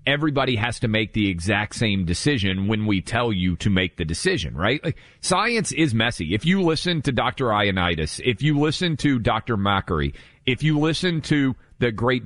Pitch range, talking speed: 105-140 Hz, 190 wpm